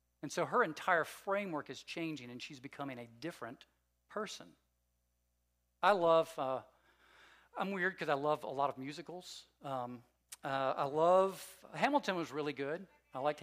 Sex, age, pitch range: male, 40-59, 130-165 Hz